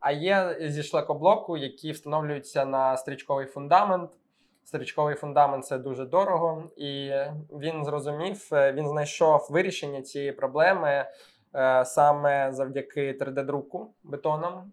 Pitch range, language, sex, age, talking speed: 140-160 Hz, Ukrainian, male, 20-39, 110 wpm